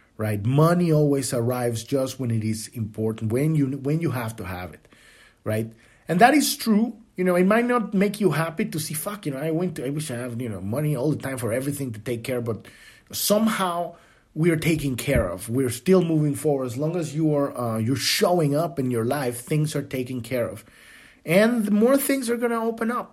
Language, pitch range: English, 120-175 Hz